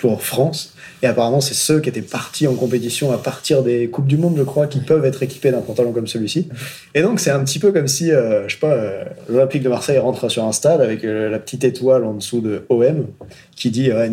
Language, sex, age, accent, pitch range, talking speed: French, male, 20-39, French, 115-150 Hz, 245 wpm